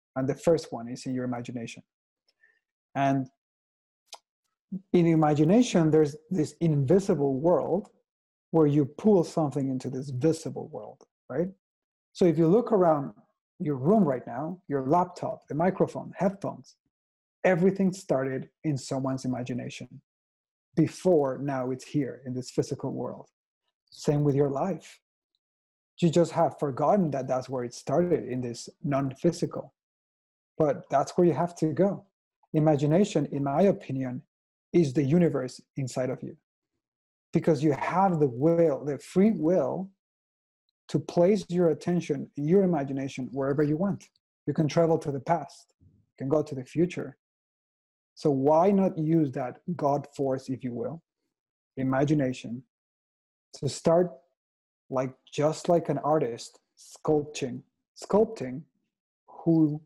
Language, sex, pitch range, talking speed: English, male, 130-170 Hz, 135 wpm